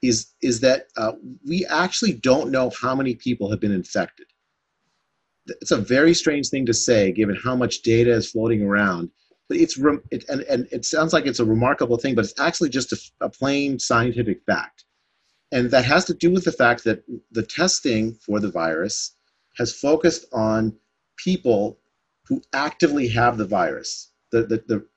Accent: American